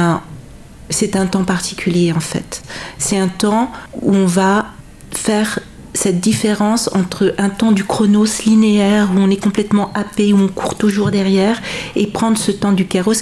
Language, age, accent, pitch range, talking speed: French, 40-59, French, 180-210 Hz, 170 wpm